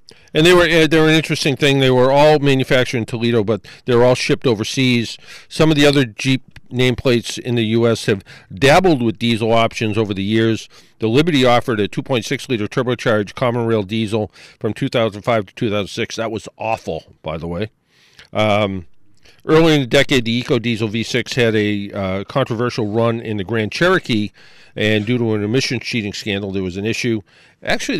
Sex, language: male, English